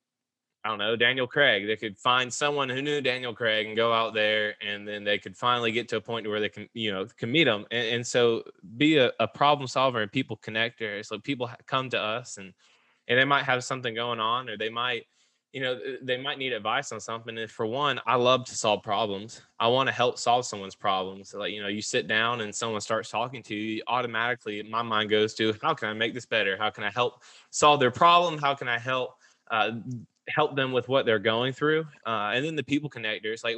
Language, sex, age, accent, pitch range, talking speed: English, male, 20-39, American, 110-130 Hz, 240 wpm